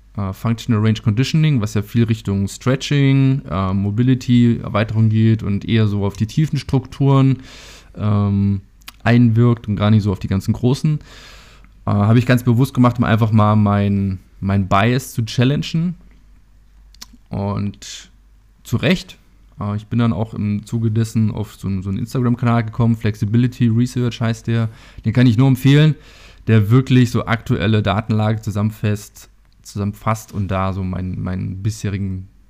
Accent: German